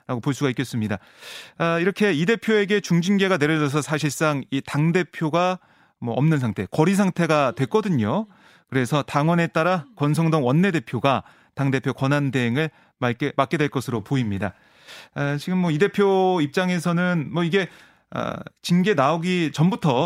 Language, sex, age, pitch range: Korean, male, 30-49, 140-180 Hz